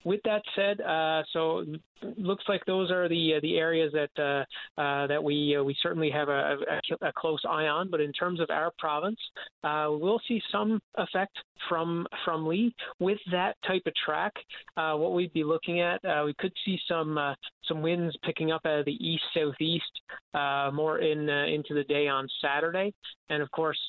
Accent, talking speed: American, 200 wpm